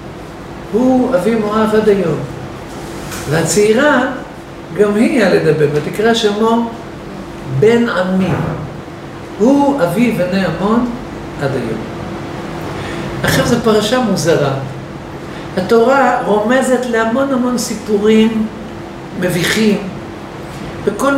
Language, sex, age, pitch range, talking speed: Hebrew, male, 50-69, 170-235 Hz, 85 wpm